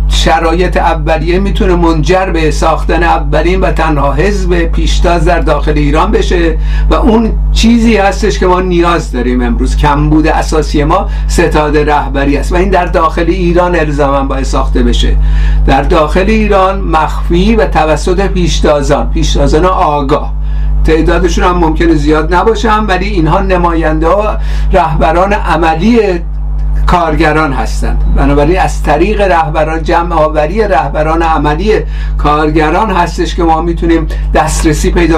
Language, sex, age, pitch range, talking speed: Persian, male, 50-69, 150-180 Hz, 130 wpm